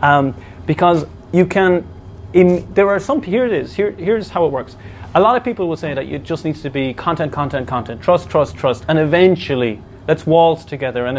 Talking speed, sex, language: 205 wpm, male, English